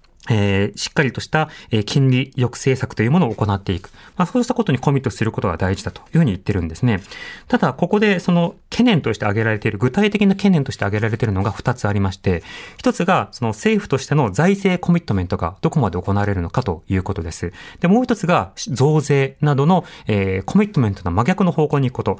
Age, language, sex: 30-49, Japanese, male